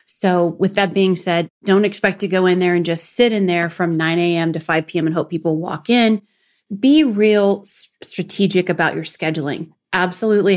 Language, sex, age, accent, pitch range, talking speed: English, female, 30-49, American, 170-205 Hz, 195 wpm